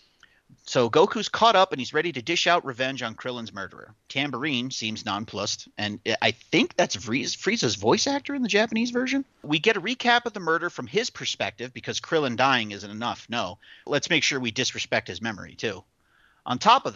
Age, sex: 40-59, male